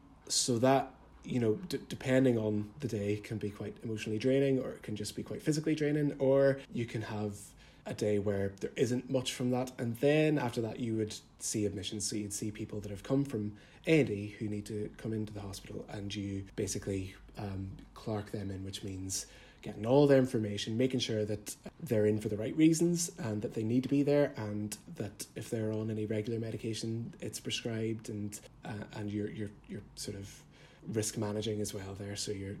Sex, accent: male, British